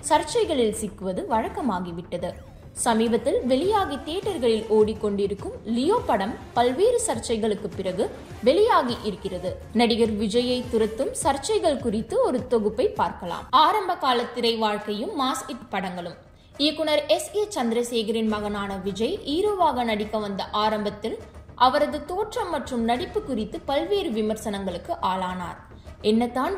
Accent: native